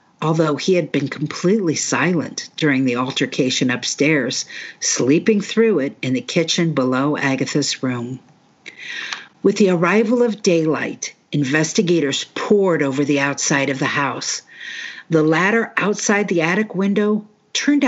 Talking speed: 130 wpm